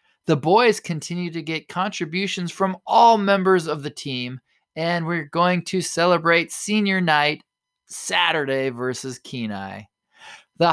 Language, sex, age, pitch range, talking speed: English, male, 20-39, 150-200 Hz, 130 wpm